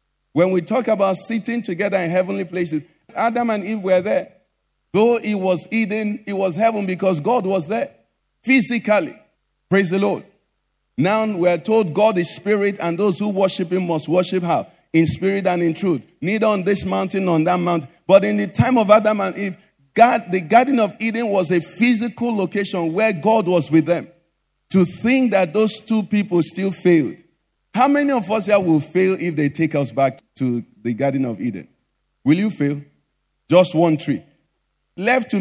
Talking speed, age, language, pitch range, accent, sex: 190 wpm, 50-69, English, 175-220 Hz, Nigerian, male